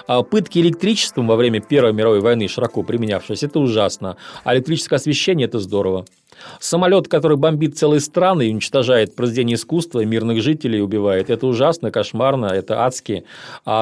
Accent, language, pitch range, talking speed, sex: native, Russian, 115-145 Hz, 155 wpm, male